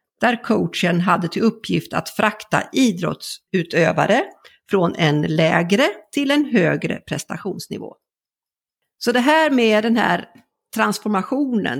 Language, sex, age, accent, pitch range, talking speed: Swedish, female, 50-69, native, 185-250 Hz, 110 wpm